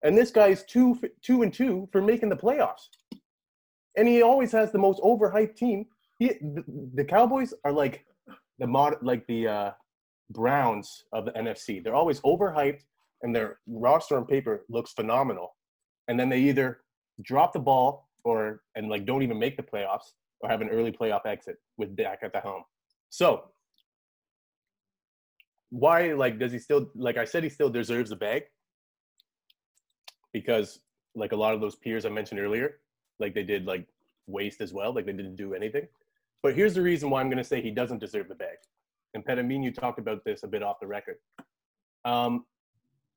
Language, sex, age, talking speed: English, male, 20-39, 190 wpm